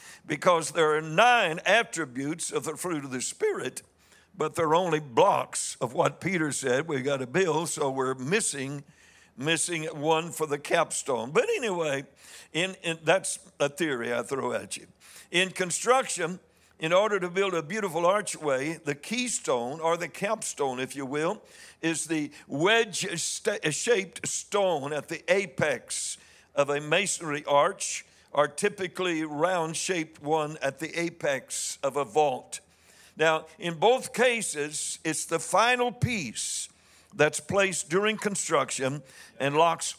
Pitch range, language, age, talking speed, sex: 150-190 Hz, English, 60-79, 140 wpm, male